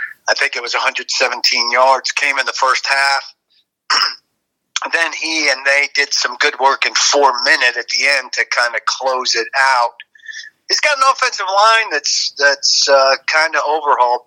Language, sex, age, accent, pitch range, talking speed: English, male, 40-59, American, 130-195 Hz, 175 wpm